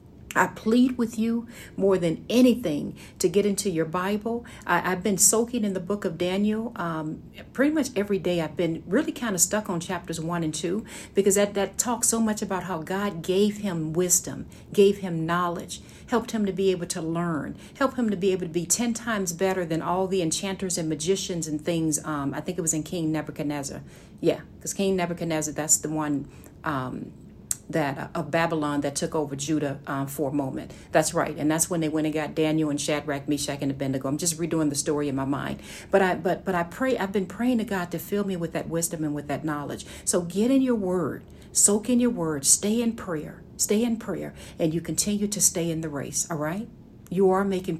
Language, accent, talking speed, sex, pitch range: English, American, 220 wpm, female, 155-200 Hz